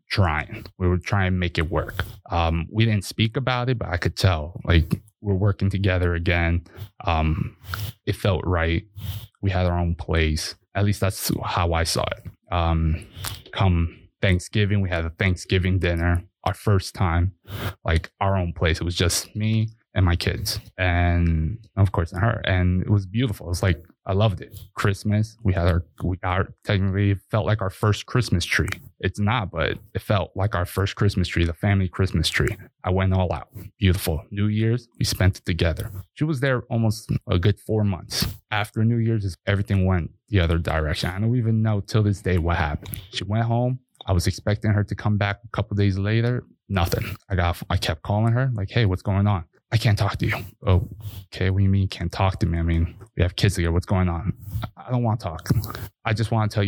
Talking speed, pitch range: 210 wpm, 90-105 Hz